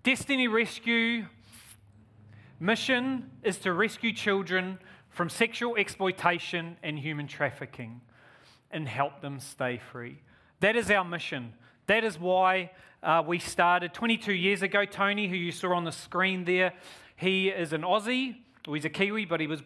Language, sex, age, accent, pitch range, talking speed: English, male, 30-49, Australian, 145-195 Hz, 155 wpm